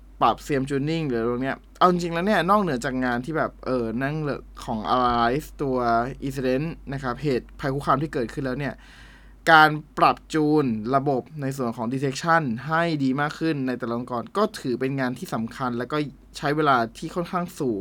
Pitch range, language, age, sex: 120-155 Hz, Thai, 20-39, male